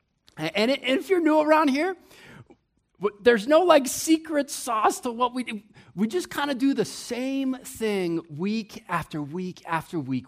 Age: 30-49